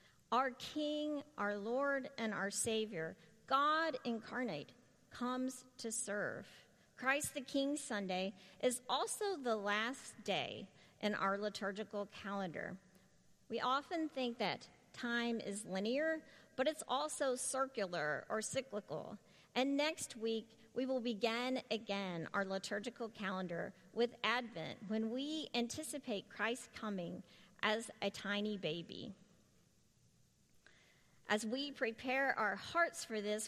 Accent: American